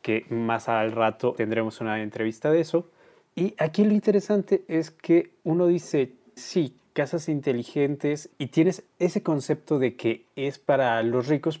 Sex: male